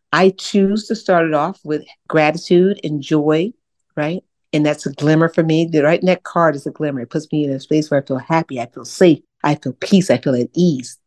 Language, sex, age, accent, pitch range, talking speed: English, female, 50-69, American, 150-190 Hz, 240 wpm